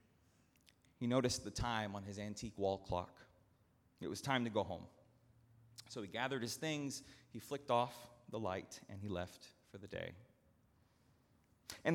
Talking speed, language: 160 wpm, English